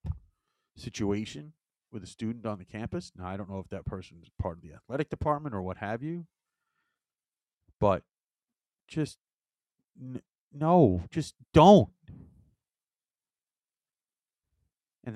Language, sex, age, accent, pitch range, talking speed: English, male, 40-59, American, 100-145 Hz, 125 wpm